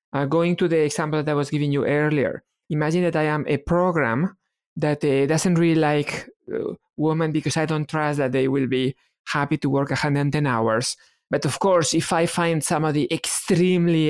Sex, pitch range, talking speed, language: male, 145-175 Hz, 190 wpm, English